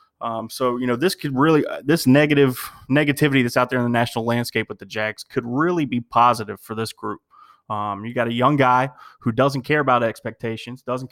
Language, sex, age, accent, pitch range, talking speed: English, male, 20-39, American, 115-135 Hz, 215 wpm